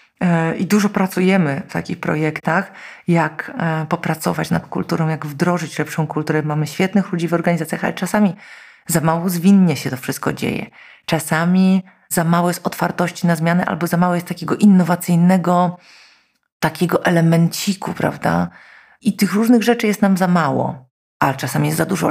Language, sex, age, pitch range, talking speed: Polish, female, 40-59, 160-195 Hz, 155 wpm